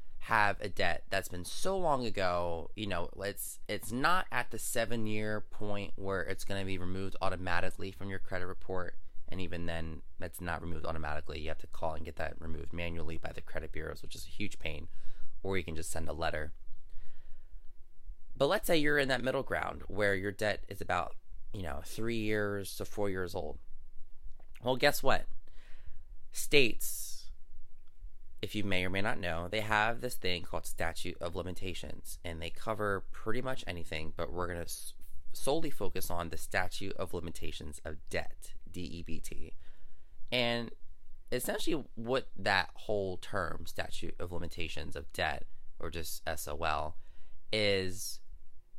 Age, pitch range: 20-39, 75-100 Hz